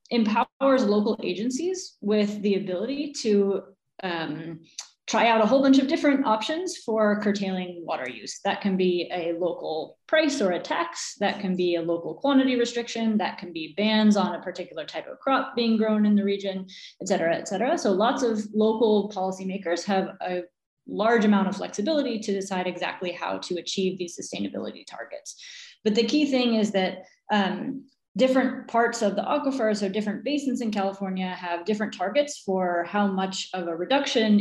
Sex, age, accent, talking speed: female, 30-49, American, 175 wpm